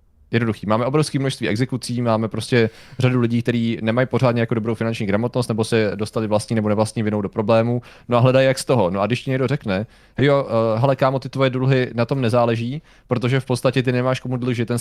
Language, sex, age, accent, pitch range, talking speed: Czech, male, 20-39, native, 110-135 Hz, 225 wpm